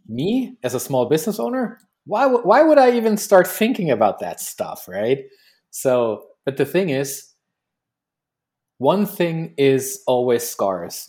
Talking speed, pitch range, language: 150 wpm, 125-175 Hz, English